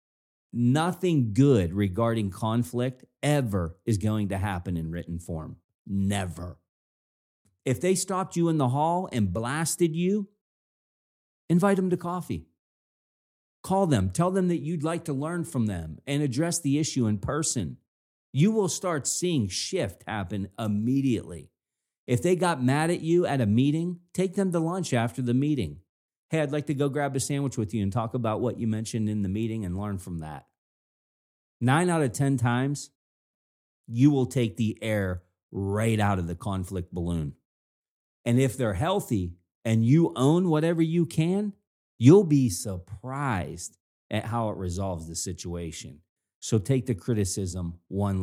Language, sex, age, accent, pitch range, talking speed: English, male, 40-59, American, 95-145 Hz, 160 wpm